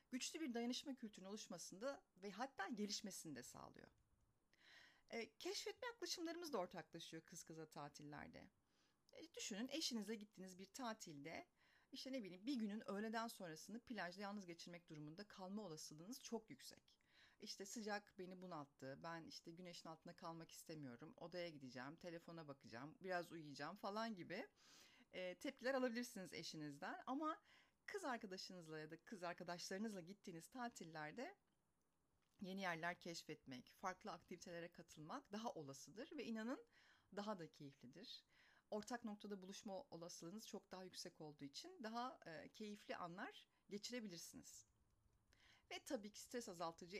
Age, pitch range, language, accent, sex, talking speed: 40-59, 165-225 Hz, Turkish, native, female, 130 wpm